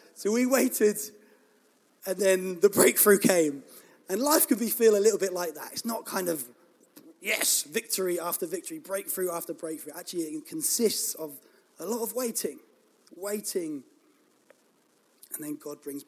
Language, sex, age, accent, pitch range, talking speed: English, male, 20-39, British, 175-280 Hz, 155 wpm